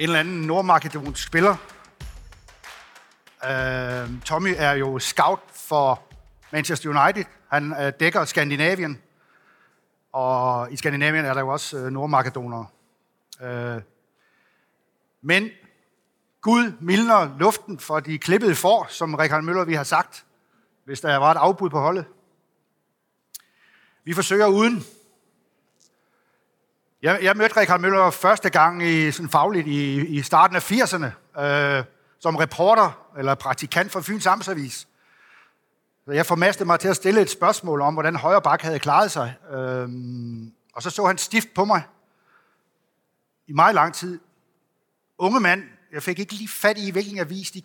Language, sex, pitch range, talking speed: Danish, male, 140-190 Hz, 135 wpm